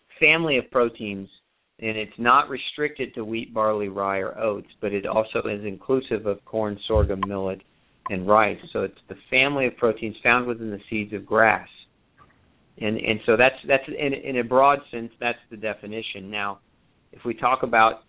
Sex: male